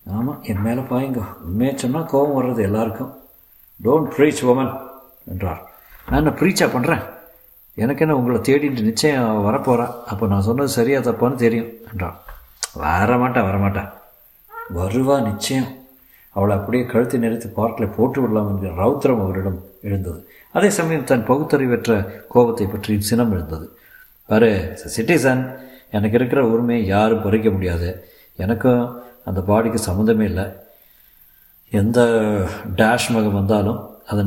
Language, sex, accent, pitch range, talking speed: Tamil, male, native, 100-125 Hz, 125 wpm